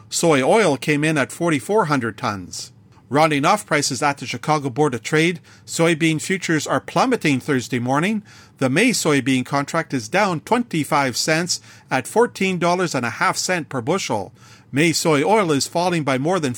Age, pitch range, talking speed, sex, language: 50-69, 130-170 Hz, 160 wpm, male, English